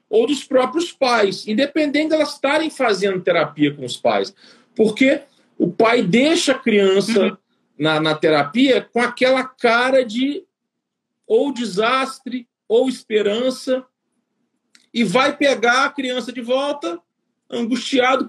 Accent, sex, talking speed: Brazilian, male, 125 wpm